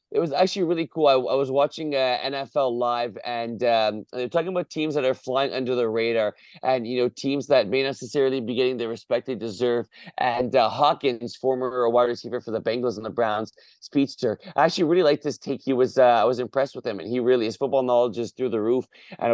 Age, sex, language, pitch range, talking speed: 30-49, male, English, 120-140 Hz, 240 wpm